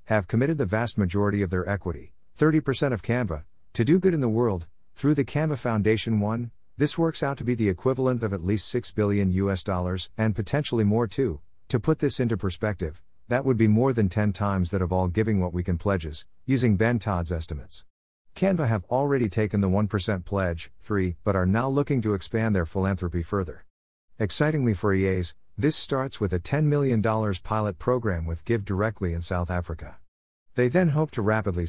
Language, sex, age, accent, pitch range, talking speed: English, male, 50-69, American, 90-120 Hz, 195 wpm